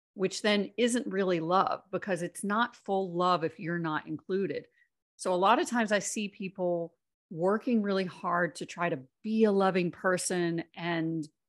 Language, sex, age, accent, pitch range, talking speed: English, female, 40-59, American, 170-210 Hz, 170 wpm